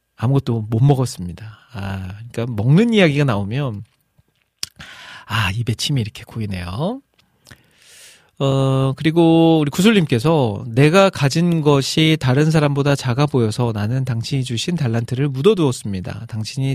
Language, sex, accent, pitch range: Korean, male, native, 115-160 Hz